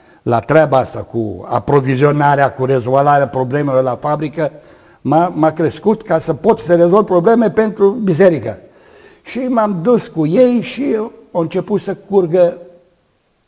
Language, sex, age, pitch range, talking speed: Romanian, male, 60-79, 130-180 Hz, 135 wpm